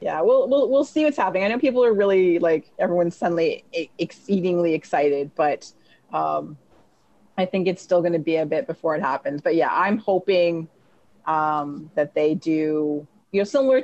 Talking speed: 180 wpm